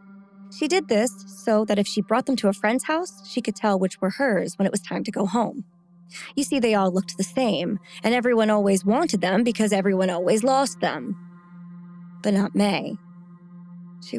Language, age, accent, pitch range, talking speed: English, 20-39, American, 195-235 Hz, 200 wpm